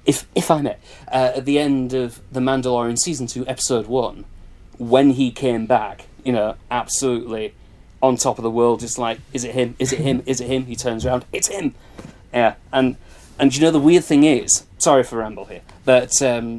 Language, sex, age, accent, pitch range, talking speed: English, male, 30-49, British, 115-135 Hz, 210 wpm